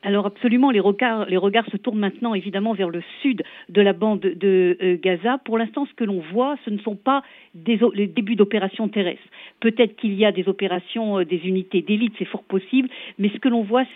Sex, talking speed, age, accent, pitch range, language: female, 220 wpm, 50-69, French, 195-245 Hz, French